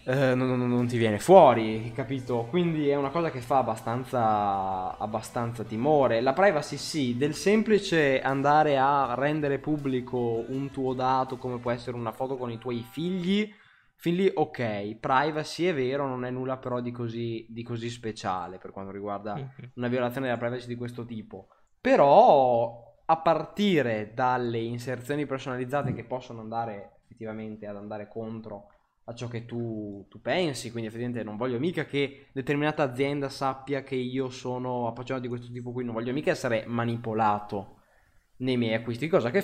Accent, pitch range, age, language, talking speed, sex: native, 110-135 Hz, 20-39, Italian, 165 wpm, male